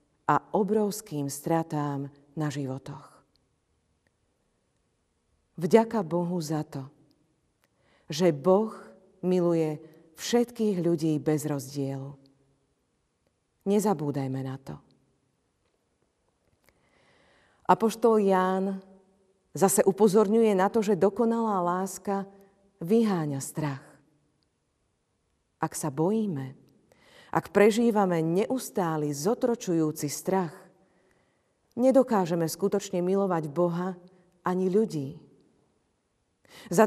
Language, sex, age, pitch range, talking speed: Slovak, female, 40-59, 155-200 Hz, 75 wpm